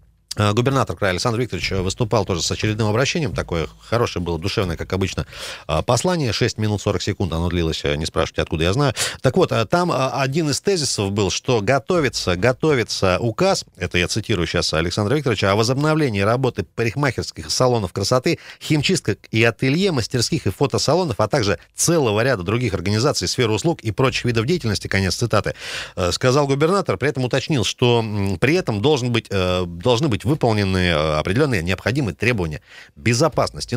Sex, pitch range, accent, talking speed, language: male, 95-135 Hz, native, 150 wpm, Russian